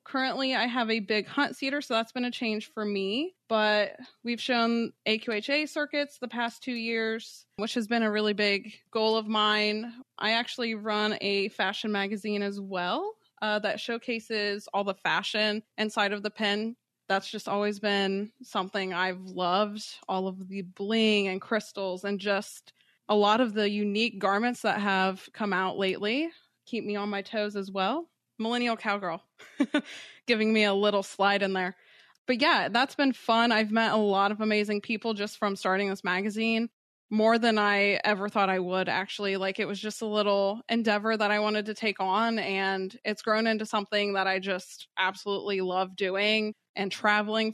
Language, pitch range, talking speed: English, 200-225 Hz, 180 wpm